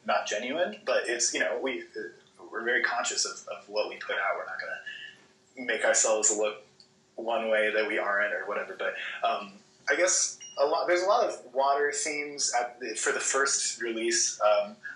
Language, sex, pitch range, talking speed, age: English, male, 110-145 Hz, 200 wpm, 20-39